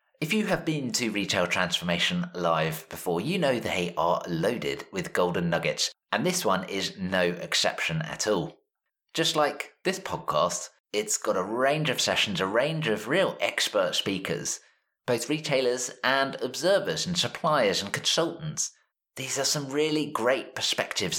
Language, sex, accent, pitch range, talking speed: English, male, British, 110-150 Hz, 155 wpm